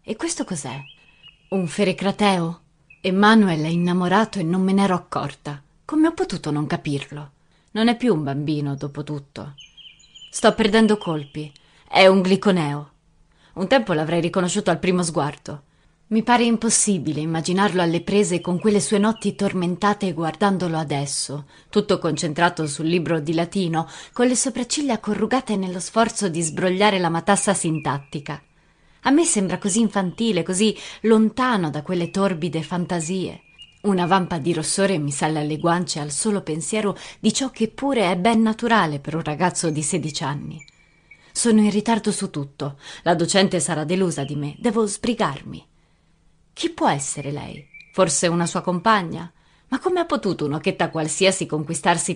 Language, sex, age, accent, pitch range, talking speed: Italian, female, 30-49, native, 155-205 Hz, 155 wpm